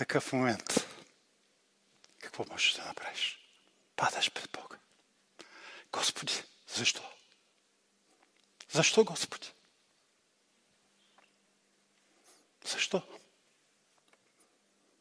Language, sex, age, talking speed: Bulgarian, male, 50-69, 55 wpm